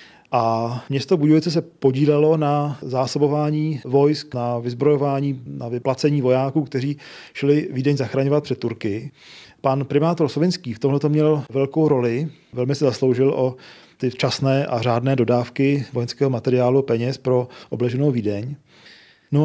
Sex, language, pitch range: male, Czech, 125-150 Hz